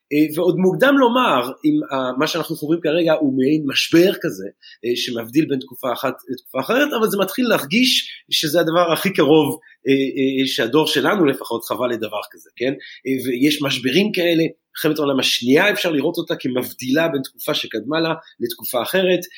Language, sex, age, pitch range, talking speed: Hebrew, male, 30-49, 130-190 Hz, 150 wpm